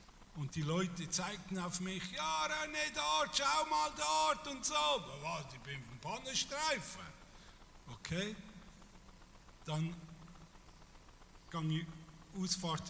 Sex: male